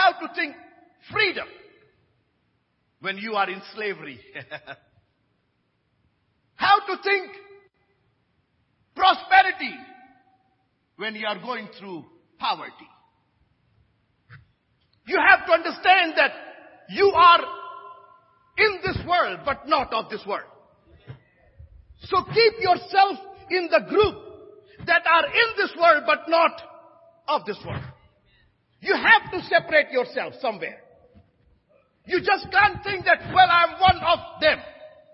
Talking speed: 115 wpm